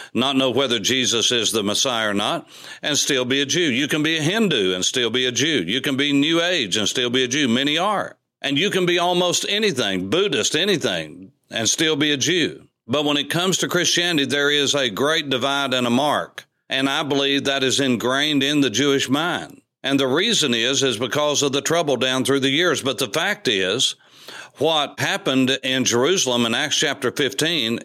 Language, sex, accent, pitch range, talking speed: English, male, American, 125-150 Hz, 210 wpm